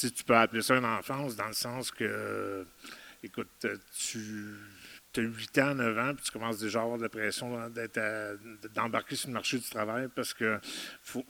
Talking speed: 205 wpm